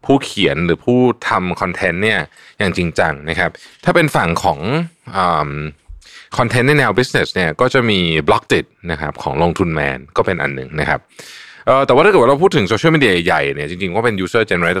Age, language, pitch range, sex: 20-39, Thai, 80-115 Hz, male